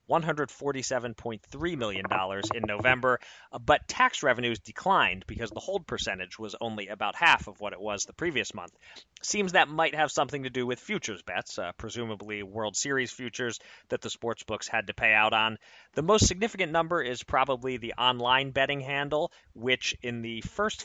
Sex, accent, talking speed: male, American, 170 wpm